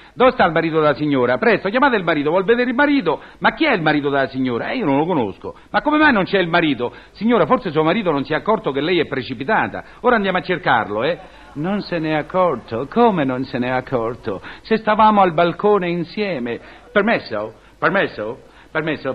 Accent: native